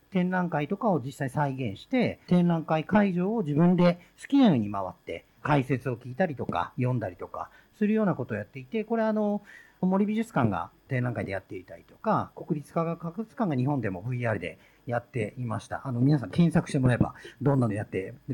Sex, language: male, Japanese